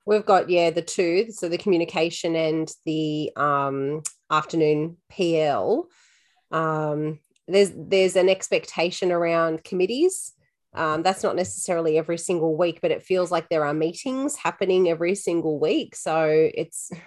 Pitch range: 160-185 Hz